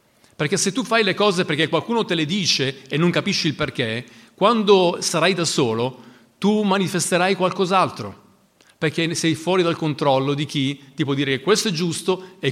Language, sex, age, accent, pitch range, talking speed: Italian, male, 40-59, native, 160-200 Hz, 180 wpm